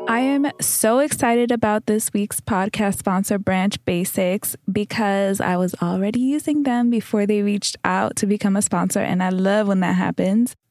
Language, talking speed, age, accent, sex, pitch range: English, 175 wpm, 20-39, American, female, 195-230 Hz